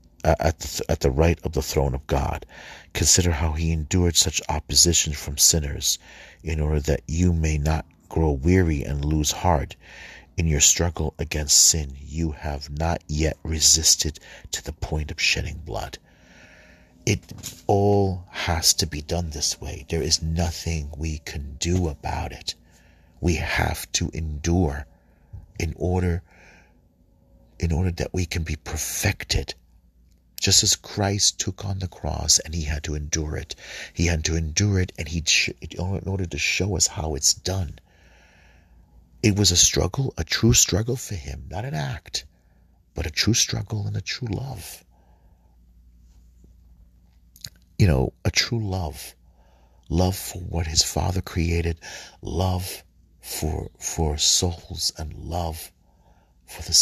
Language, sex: English, male